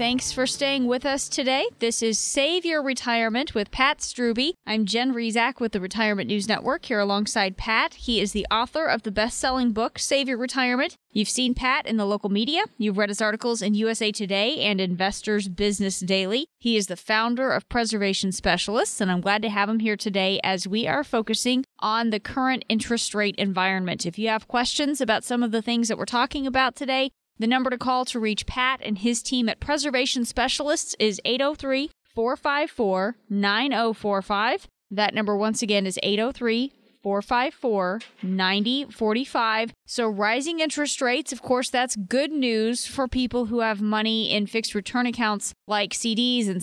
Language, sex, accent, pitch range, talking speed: English, female, American, 215-260 Hz, 180 wpm